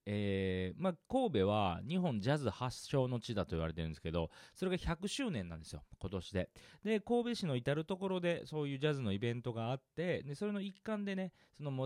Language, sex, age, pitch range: Japanese, male, 40-59, 95-155 Hz